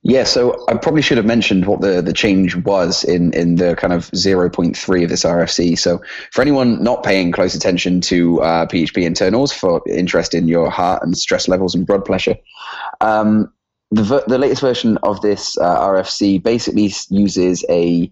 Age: 20-39